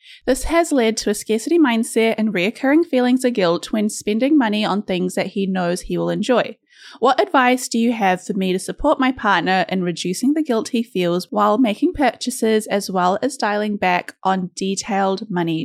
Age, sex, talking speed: 20-39, female, 195 wpm